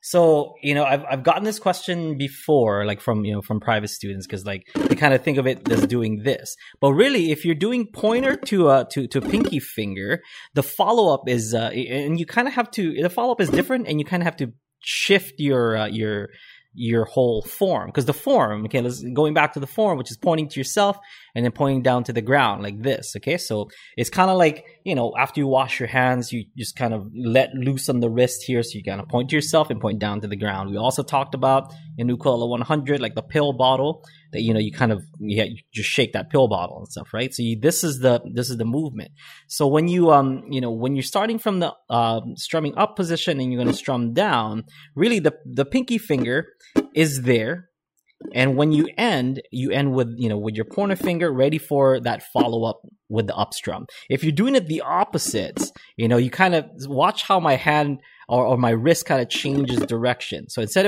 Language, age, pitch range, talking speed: English, 20-39, 115-160 Hz, 235 wpm